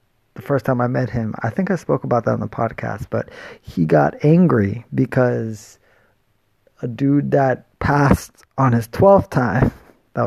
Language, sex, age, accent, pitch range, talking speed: English, male, 30-49, American, 105-150 Hz, 170 wpm